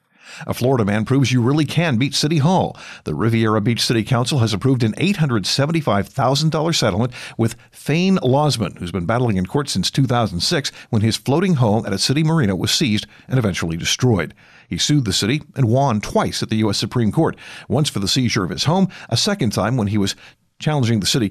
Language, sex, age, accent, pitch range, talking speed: English, male, 50-69, American, 105-145 Hz, 200 wpm